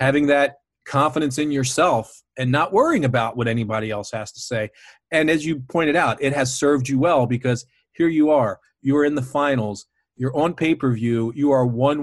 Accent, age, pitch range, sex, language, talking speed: American, 40-59, 120-155 Hz, male, English, 195 wpm